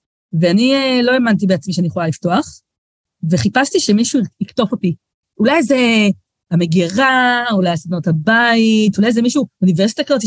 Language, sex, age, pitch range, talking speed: Hebrew, female, 30-49, 185-250 Hz, 135 wpm